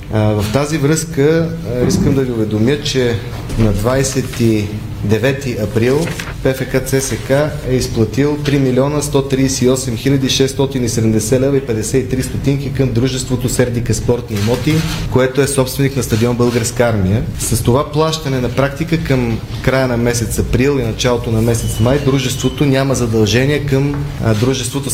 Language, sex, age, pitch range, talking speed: Bulgarian, male, 30-49, 120-135 Hz, 135 wpm